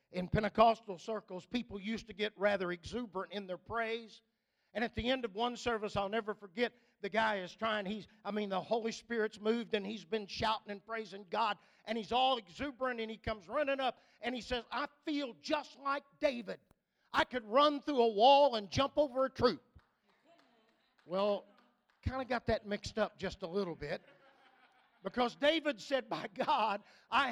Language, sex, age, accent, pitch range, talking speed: English, male, 50-69, American, 215-285 Hz, 185 wpm